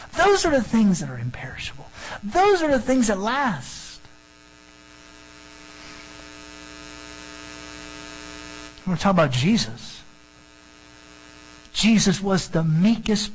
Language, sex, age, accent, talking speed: English, male, 50-69, American, 95 wpm